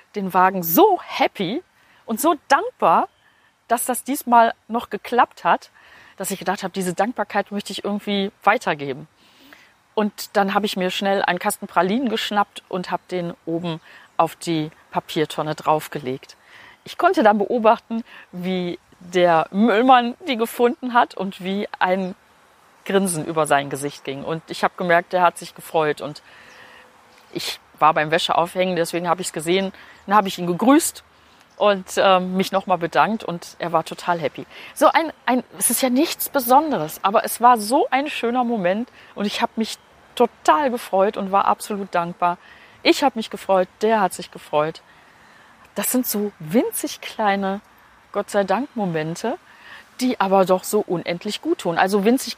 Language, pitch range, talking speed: German, 175-240 Hz, 165 wpm